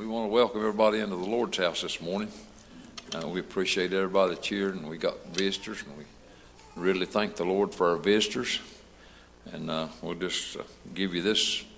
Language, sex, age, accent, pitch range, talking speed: English, male, 60-79, American, 80-105 Hz, 195 wpm